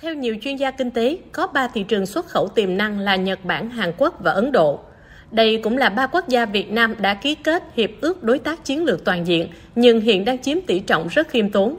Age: 20-39